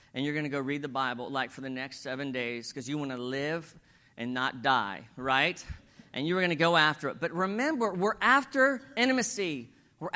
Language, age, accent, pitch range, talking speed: English, 40-59, American, 135-205 Hz, 215 wpm